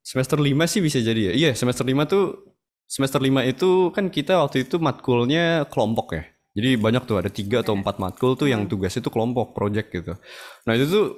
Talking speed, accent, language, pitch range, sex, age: 205 wpm, native, Indonesian, 100-135 Hz, male, 20-39